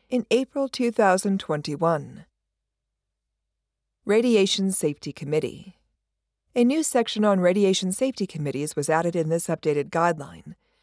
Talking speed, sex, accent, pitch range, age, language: 105 wpm, female, American, 160-220 Hz, 50-69, English